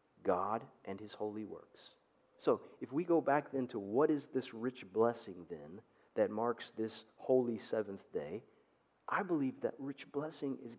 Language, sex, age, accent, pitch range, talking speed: English, male, 40-59, American, 130-185 Hz, 165 wpm